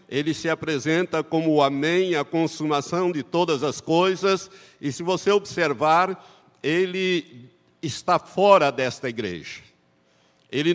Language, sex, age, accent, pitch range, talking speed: Portuguese, male, 60-79, Brazilian, 110-170 Hz, 125 wpm